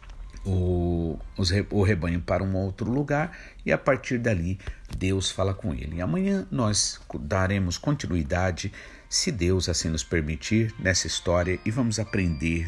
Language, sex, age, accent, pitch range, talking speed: Portuguese, male, 50-69, Brazilian, 90-110 Hz, 135 wpm